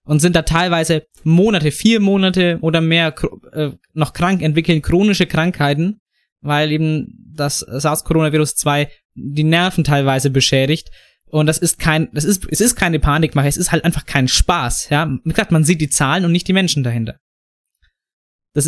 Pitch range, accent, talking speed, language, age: 145-180 Hz, German, 165 wpm, German, 20-39